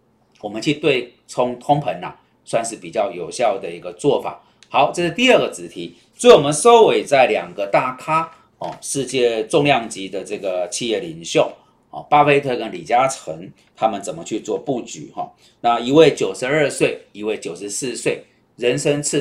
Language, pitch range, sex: Chinese, 110-160 Hz, male